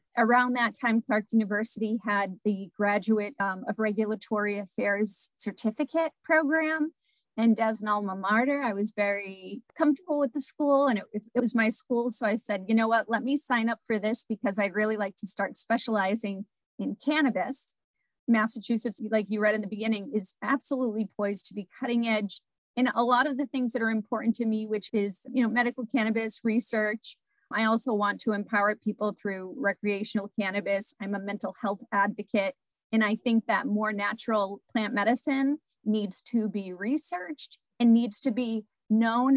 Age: 40-59